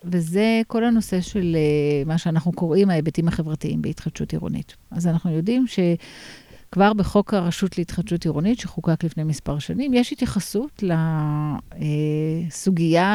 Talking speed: 125 wpm